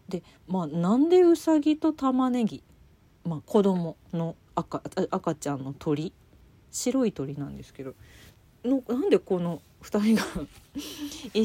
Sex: female